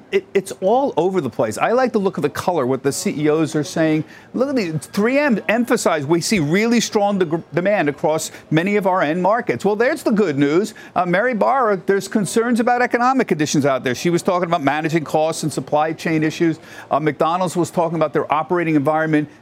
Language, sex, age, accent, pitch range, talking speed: English, male, 50-69, American, 150-210 Hz, 205 wpm